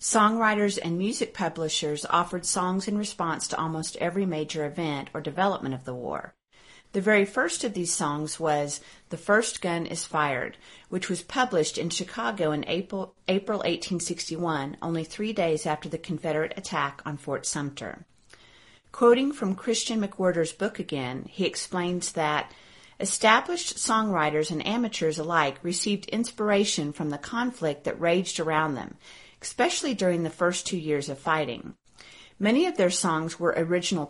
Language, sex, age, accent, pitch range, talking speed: English, female, 40-59, American, 155-205 Hz, 150 wpm